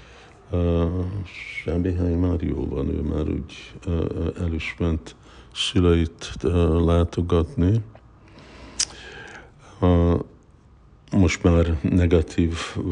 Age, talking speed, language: 60-79, 95 wpm, Hungarian